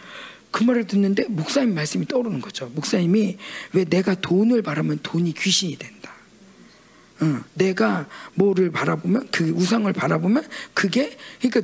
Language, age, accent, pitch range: Korean, 40-59, native, 195-300 Hz